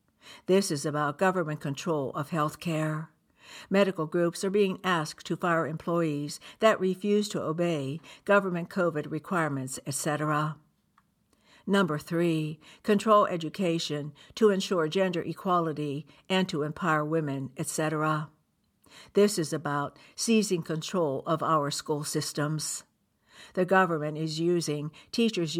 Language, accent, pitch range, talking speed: English, American, 150-185 Hz, 120 wpm